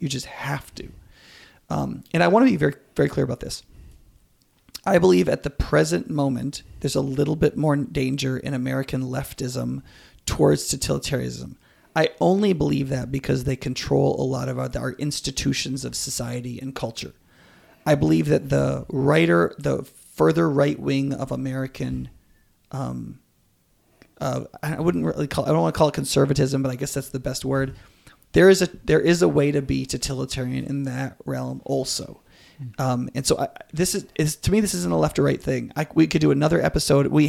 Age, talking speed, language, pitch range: 30-49, 190 wpm, English, 125-145 Hz